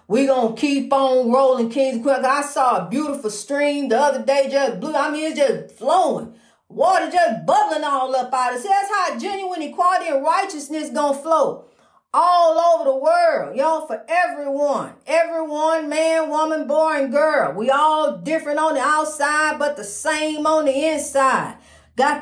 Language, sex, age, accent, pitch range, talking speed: English, female, 40-59, American, 280-320 Hz, 175 wpm